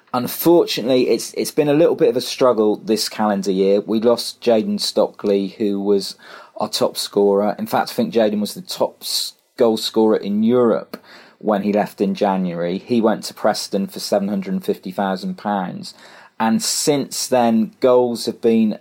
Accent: British